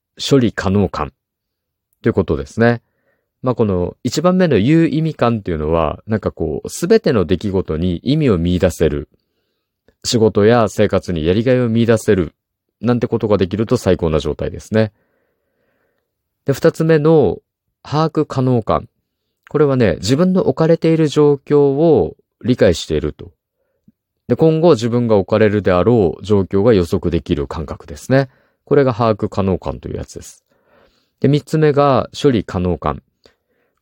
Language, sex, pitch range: Japanese, male, 90-145 Hz